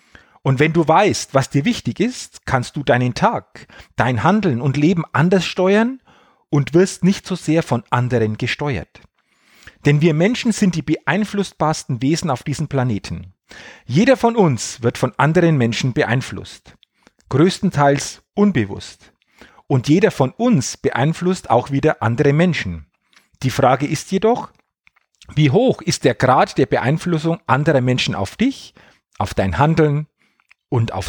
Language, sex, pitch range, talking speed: German, male, 125-175 Hz, 145 wpm